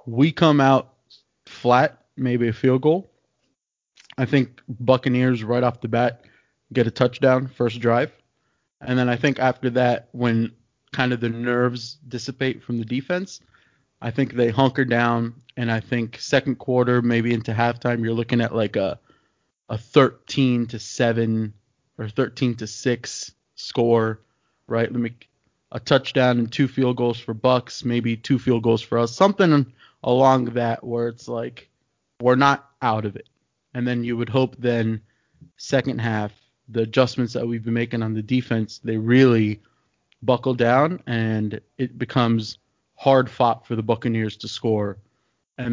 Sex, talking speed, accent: male, 160 wpm, American